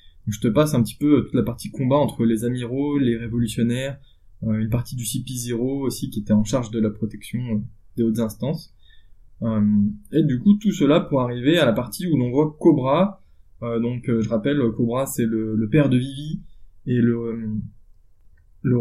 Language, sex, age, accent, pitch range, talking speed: French, male, 20-39, French, 115-145 Hz, 200 wpm